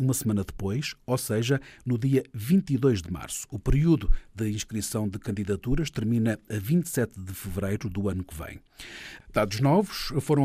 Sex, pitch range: male, 110-140 Hz